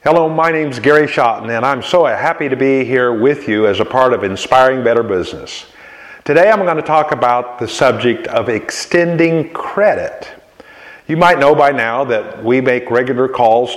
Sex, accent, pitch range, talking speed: male, American, 120-150 Hz, 185 wpm